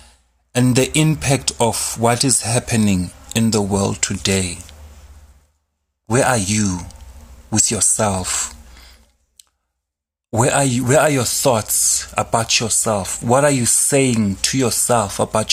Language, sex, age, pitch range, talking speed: English, male, 30-49, 85-120 Hz, 125 wpm